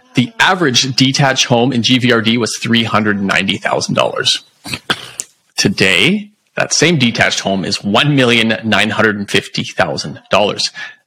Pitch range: 115-145 Hz